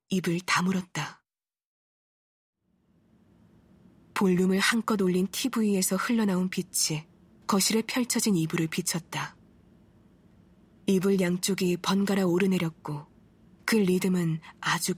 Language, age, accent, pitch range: Korean, 20-39, native, 170-205 Hz